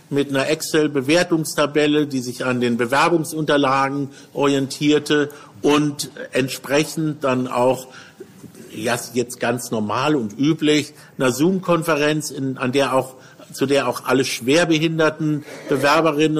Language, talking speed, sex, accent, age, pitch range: German, 110 wpm, male, German, 50-69, 130-155 Hz